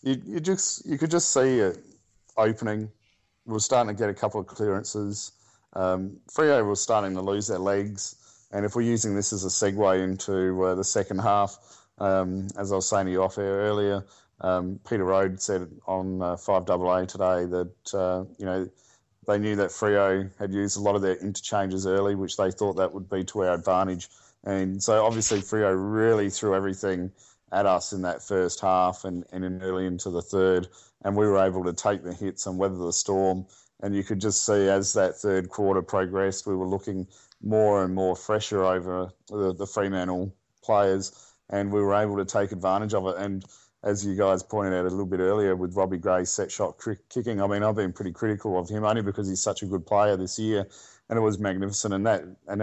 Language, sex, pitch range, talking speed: English, male, 95-105 Hz, 205 wpm